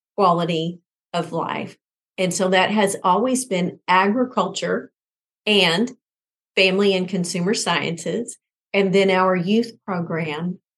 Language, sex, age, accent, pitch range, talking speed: English, female, 40-59, American, 175-210 Hz, 110 wpm